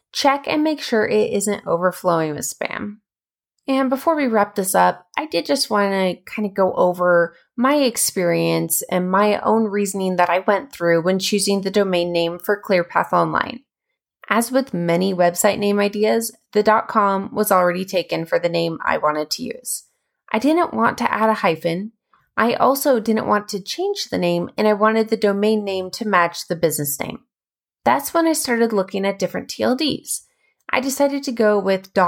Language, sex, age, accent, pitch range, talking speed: English, female, 20-39, American, 180-230 Hz, 185 wpm